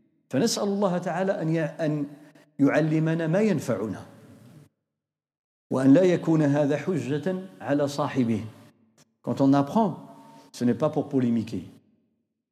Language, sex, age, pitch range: French, male, 50-69, 135-185 Hz